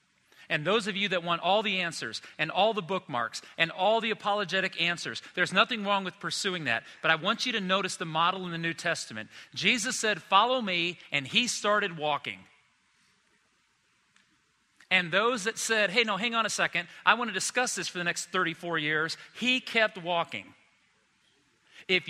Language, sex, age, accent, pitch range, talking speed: English, male, 40-59, American, 165-215 Hz, 185 wpm